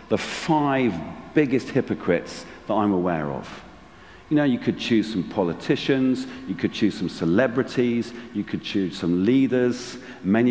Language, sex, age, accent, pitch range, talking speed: English, male, 50-69, British, 90-130 Hz, 150 wpm